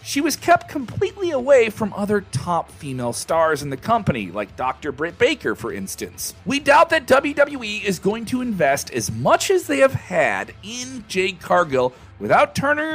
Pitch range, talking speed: 155-255 Hz, 175 wpm